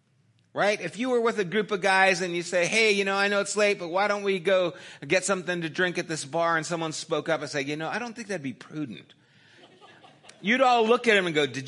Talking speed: 270 wpm